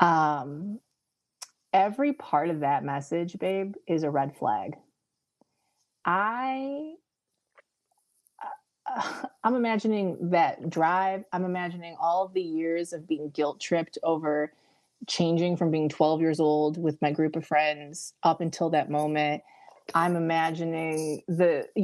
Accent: American